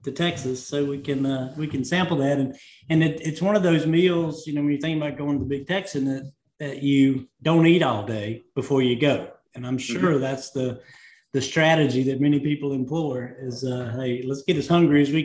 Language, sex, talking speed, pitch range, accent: English, male, 230 wpm, 130-155 Hz, American